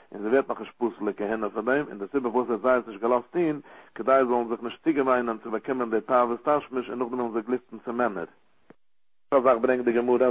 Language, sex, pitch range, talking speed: English, male, 110-130 Hz, 170 wpm